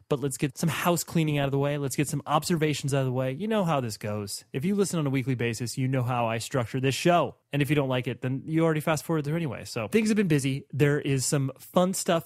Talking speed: 295 wpm